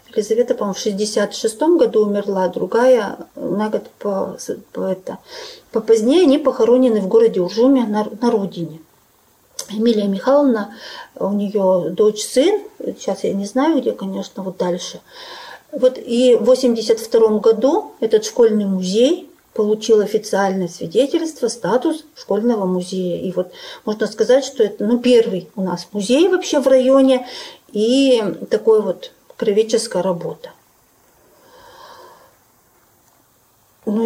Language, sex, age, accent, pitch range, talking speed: Russian, female, 40-59, native, 200-260 Hz, 120 wpm